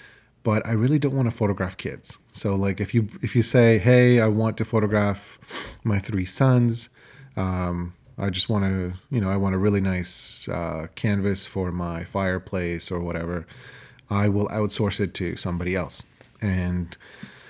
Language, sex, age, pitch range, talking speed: English, male, 30-49, 90-115 Hz, 170 wpm